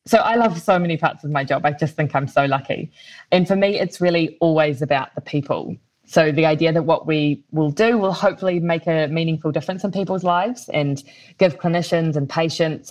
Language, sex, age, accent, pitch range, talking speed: English, female, 20-39, Australian, 150-175 Hz, 215 wpm